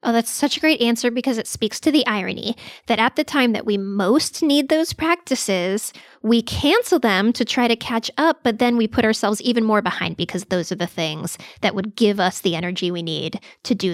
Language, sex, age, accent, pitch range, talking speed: English, female, 20-39, American, 195-250 Hz, 230 wpm